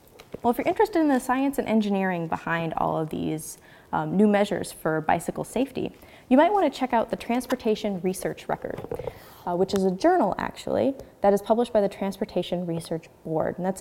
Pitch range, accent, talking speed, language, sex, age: 185-255 Hz, American, 195 wpm, English, female, 20-39